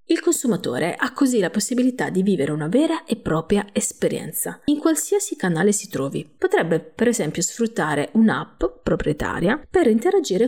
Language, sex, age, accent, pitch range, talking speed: Italian, female, 30-49, native, 170-260 Hz, 150 wpm